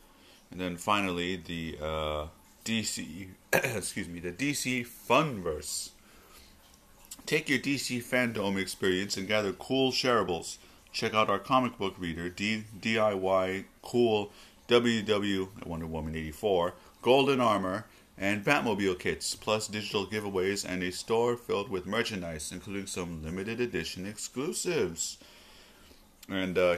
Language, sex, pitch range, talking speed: English, male, 90-115 Hz, 120 wpm